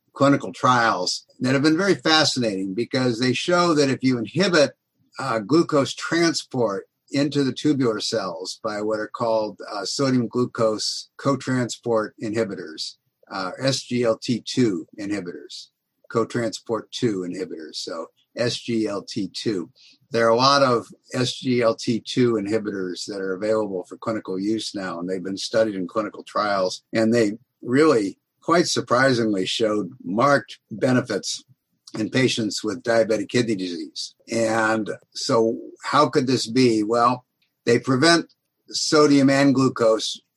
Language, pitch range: English, 110-135 Hz